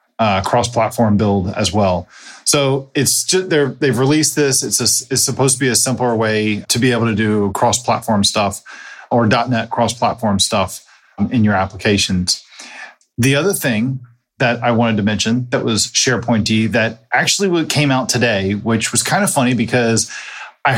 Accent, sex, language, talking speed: American, male, English, 170 wpm